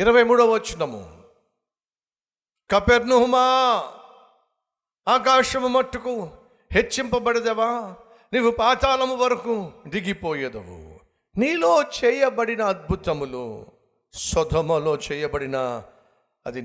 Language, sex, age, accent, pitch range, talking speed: Telugu, male, 60-79, native, 145-245 Hz, 65 wpm